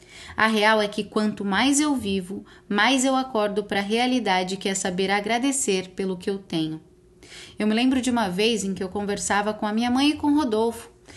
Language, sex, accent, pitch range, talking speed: Portuguese, female, Brazilian, 195-255 Hz, 215 wpm